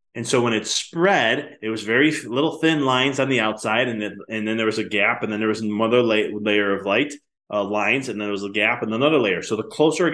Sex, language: male, English